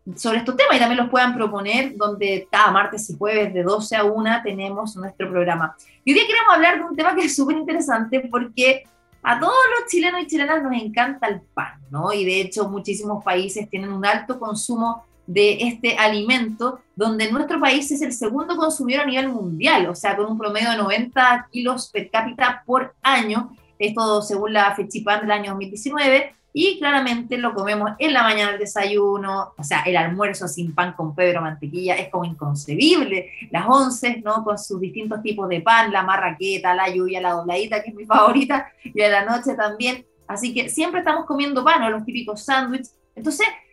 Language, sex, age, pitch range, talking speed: Spanish, female, 20-39, 205-265 Hz, 195 wpm